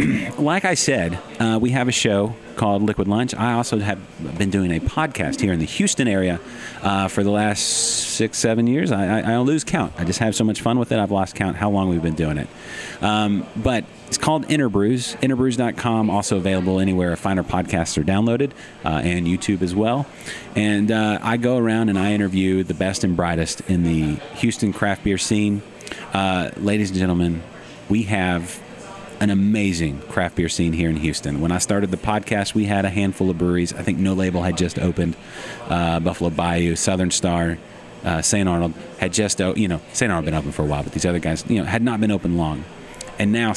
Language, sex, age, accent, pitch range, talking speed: English, male, 30-49, American, 85-110 Hz, 215 wpm